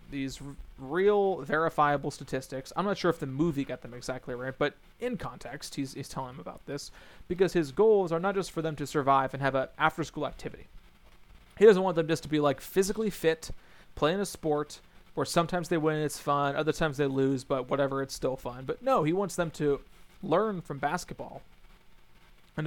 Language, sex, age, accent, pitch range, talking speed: English, male, 30-49, American, 140-175 Hz, 205 wpm